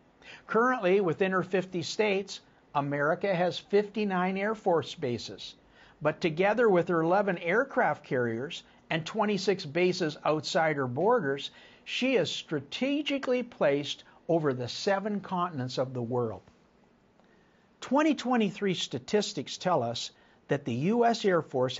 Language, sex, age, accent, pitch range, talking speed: English, male, 50-69, American, 145-215 Hz, 120 wpm